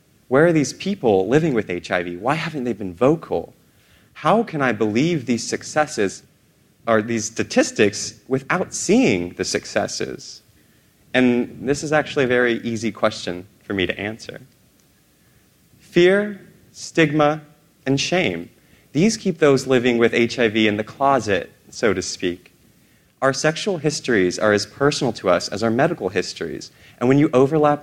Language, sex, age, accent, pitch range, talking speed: English, male, 30-49, American, 105-145 Hz, 150 wpm